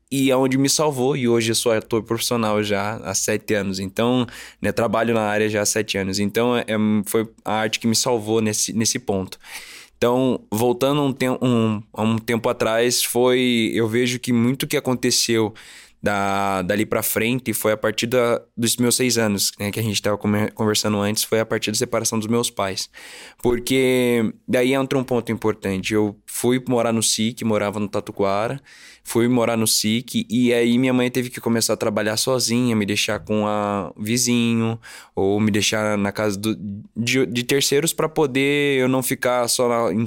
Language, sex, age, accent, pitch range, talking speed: Portuguese, male, 10-29, Brazilian, 110-125 Hz, 190 wpm